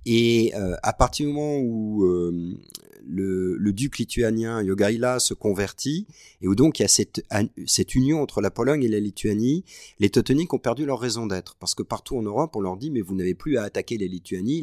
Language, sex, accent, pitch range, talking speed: French, male, French, 90-120 Hz, 215 wpm